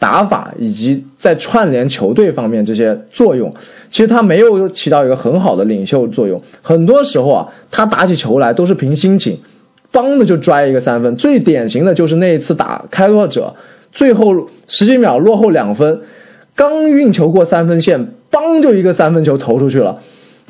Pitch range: 150-240 Hz